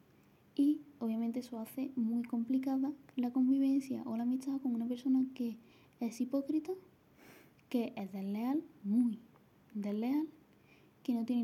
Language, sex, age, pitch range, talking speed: Spanish, female, 20-39, 220-270 Hz, 130 wpm